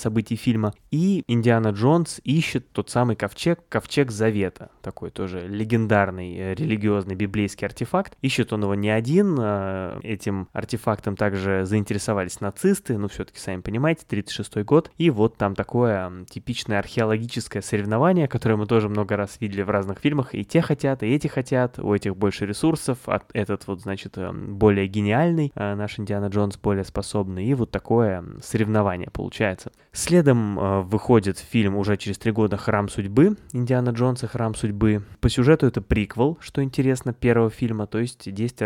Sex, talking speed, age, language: male, 155 wpm, 20-39, Russian